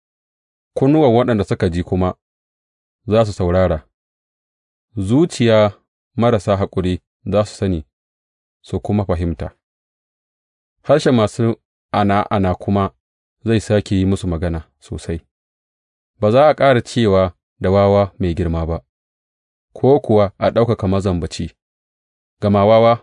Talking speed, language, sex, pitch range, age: 95 wpm, English, male, 85-110 Hz, 30-49